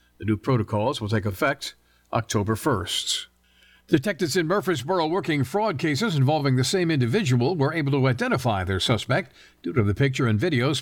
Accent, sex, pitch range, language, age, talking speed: American, male, 110-145 Hz, English, 50-69, 165 wpm